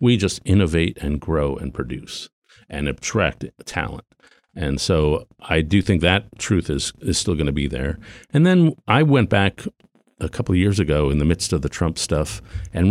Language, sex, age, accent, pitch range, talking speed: English, male, 50-69, American, 80-100 Hz, 190 wpm